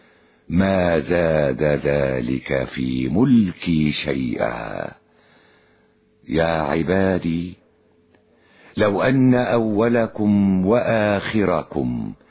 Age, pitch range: 60-79, 80-110 Hz